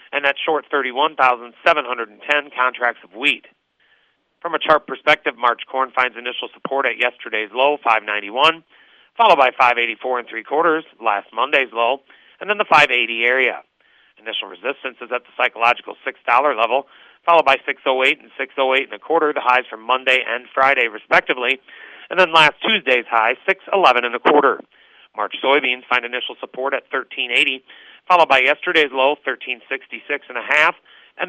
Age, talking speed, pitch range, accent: 40-59, 155 wpm, 125-145 Hz, American